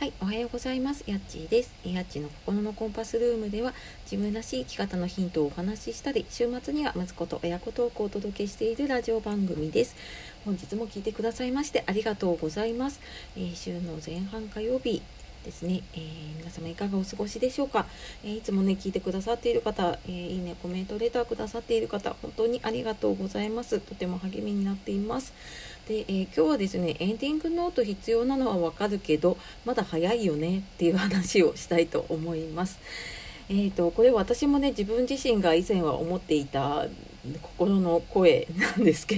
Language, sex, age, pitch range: Japanese, female, 40-59, 170-230 Hz